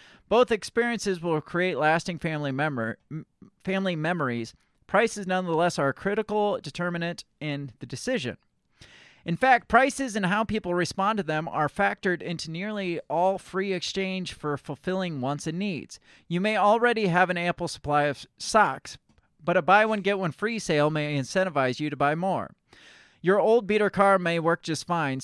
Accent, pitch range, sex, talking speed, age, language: American, 145-195 Hz, male, 165 wpm, 30-49, English